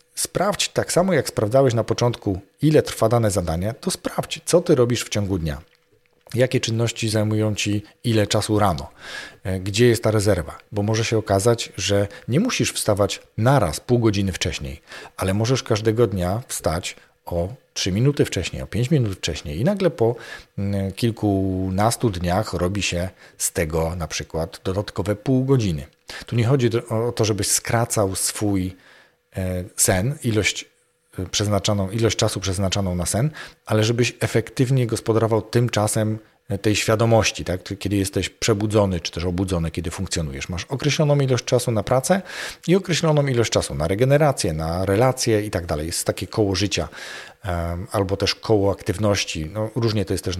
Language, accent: Polish, native